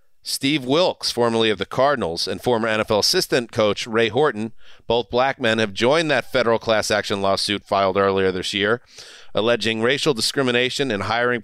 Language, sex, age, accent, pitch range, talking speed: English, male, 40-59, American, 105-130 Hz, 170 wpm